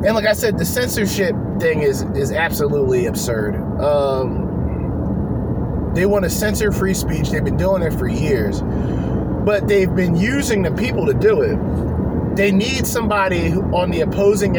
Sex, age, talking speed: male, 30-49, 160 wpm